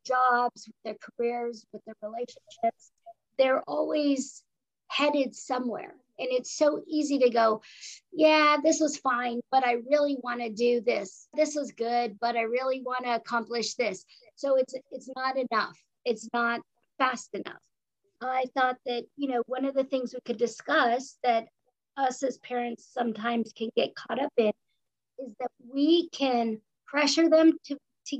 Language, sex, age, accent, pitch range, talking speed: English, female, 50-69, American, 235-275 Hz, 165 wpm